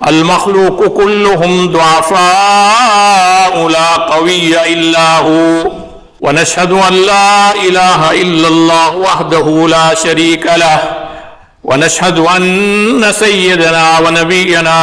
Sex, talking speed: male, 85 wpm